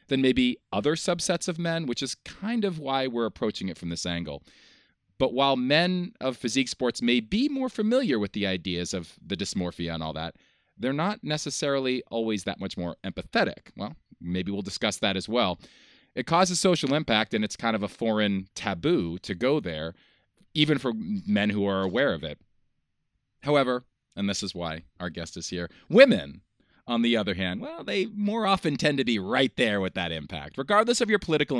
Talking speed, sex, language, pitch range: 195 wpm, male, English, 95-150 Hz